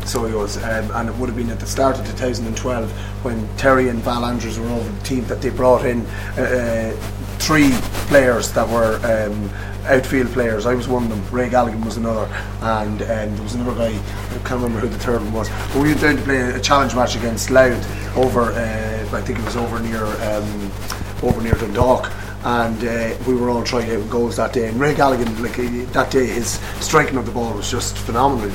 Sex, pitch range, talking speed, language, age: male, 105-130 Hz, 225 wpm, English, 30-49